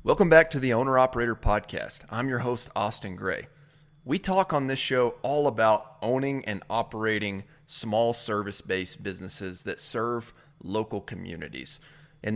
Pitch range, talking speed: 105-140 Hz, 145 wpm